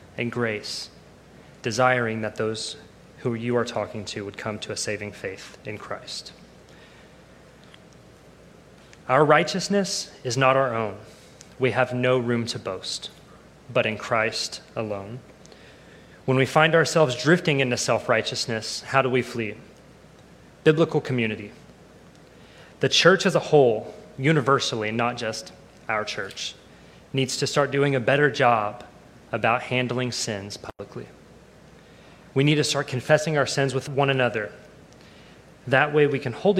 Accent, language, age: American, English, 30-49